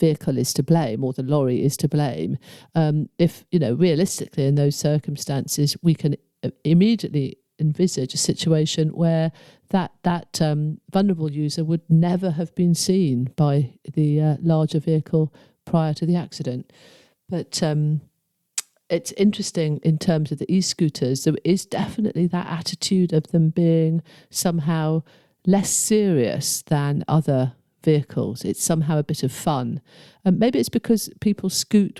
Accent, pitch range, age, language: British, 150-190 Hz, 50-69, English